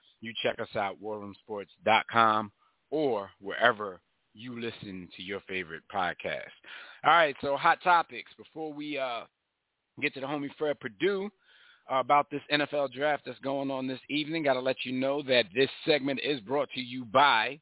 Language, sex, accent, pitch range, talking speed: English, male, American, 110-150 Hz, 170 wpm